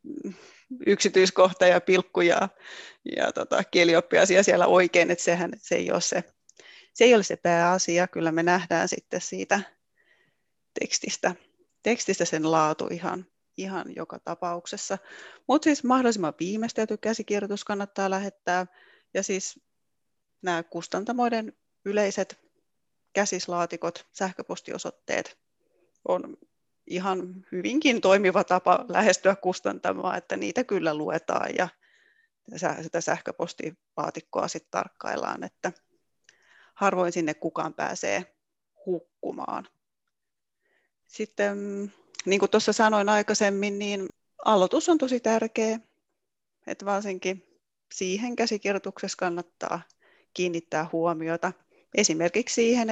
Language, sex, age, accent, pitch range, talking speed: Finnish, female, 30-49, native, 180-215 Hz, 100 wpm